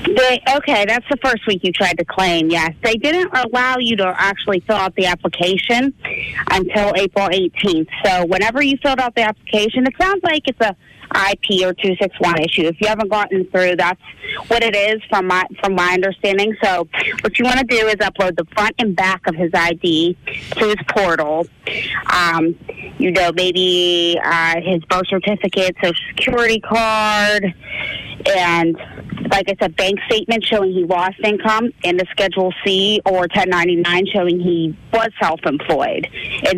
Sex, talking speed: female, 170 wpm